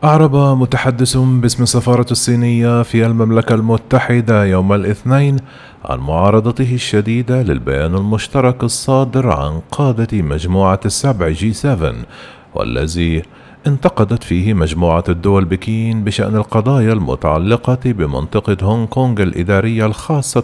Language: Arabic